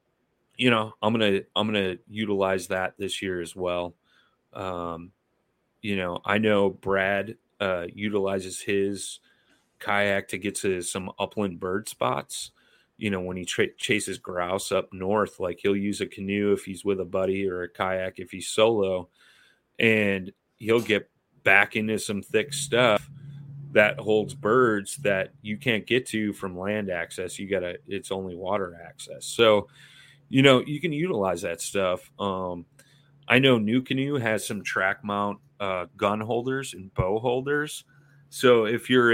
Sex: male